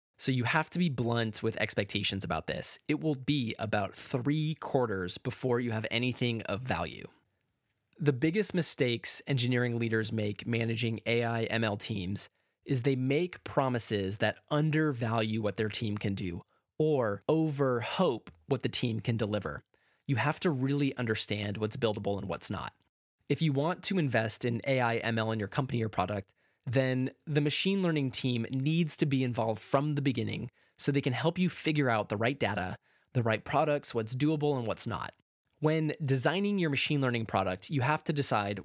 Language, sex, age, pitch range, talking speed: English, male, 20-39, 110-145 Hz, 175 wpm